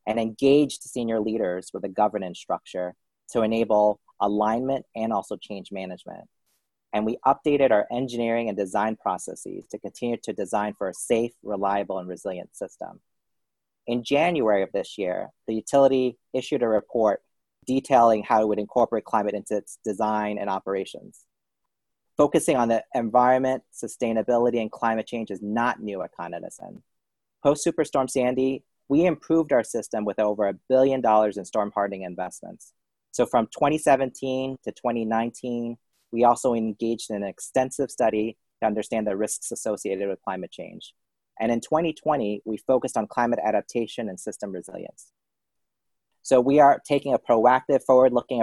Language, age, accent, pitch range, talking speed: English, 30-49, American, 105-130 Hz, 150 wpm